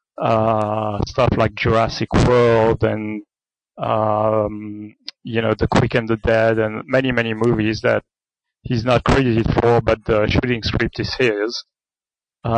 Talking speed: 145 wpm